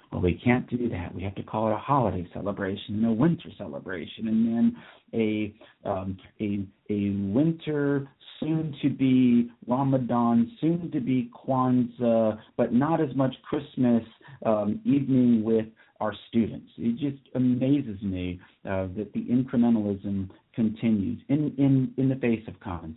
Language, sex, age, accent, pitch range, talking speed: English, male, 40-59, American, 95-120 Hz, 150 wpm